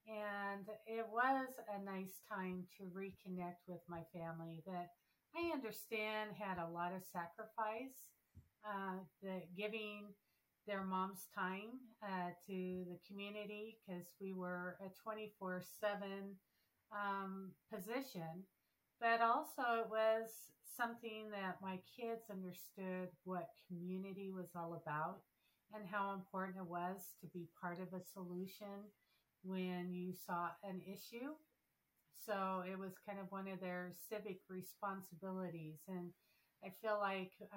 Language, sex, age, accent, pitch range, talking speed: English, female, 50-69, American, 180-210 Hz, 125 wpm